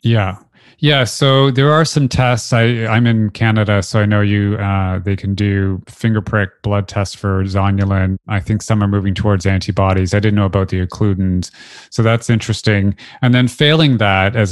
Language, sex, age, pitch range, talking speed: English, male, 30-49, 95-115 Hz, 190 wpm